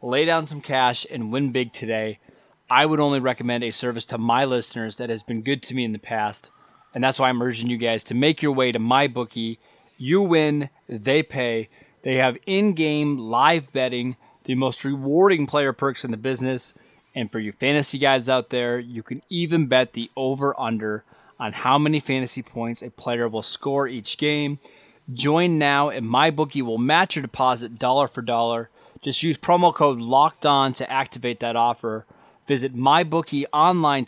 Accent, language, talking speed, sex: American, English, 190 wpm, male